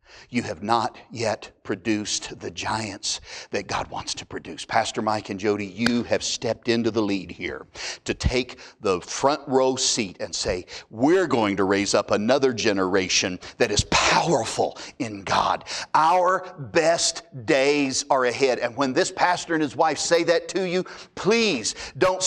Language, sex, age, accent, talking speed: English, male, 50-69, American, 165 wpm